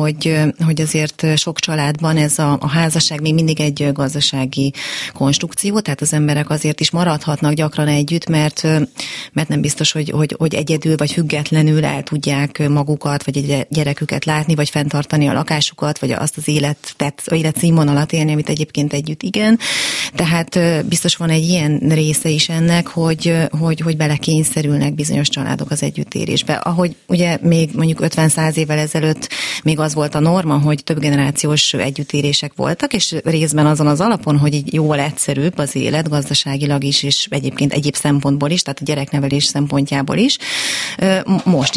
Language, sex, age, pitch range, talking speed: Hungarian, female, 30-49, 145-165 Hz, 160 wpm